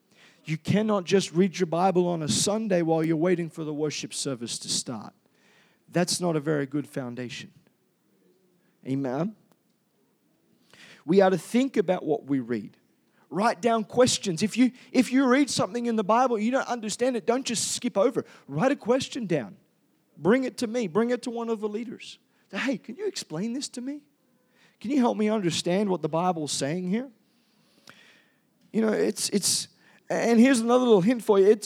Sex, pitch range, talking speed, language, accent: male, 175-230 Hz, 185 wpm, English, American